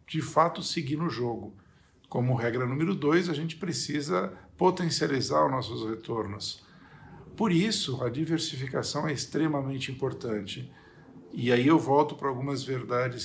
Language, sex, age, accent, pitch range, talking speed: Portuguese, male, 50-69, Brazilian, 120-155 Hz, 135 wpm